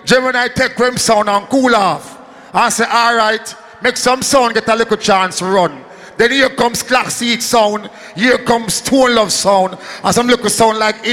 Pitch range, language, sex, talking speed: 230-295 Hz, English, male, 190 wpm